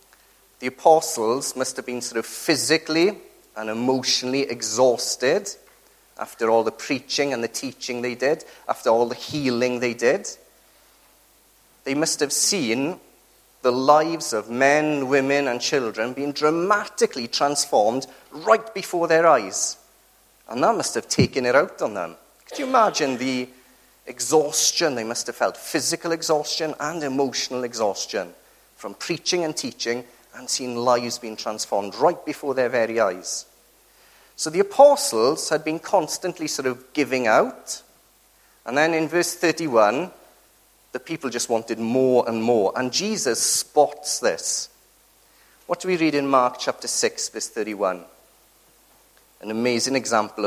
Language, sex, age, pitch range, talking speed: English, male, 30-49, 120-165 Hz, 145 wpm